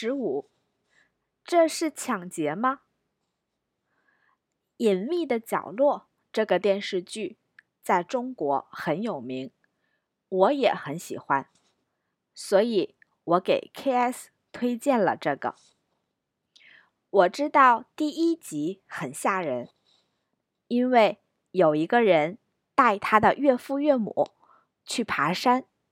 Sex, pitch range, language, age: female, 210-295 Hz, Chinese, 20-39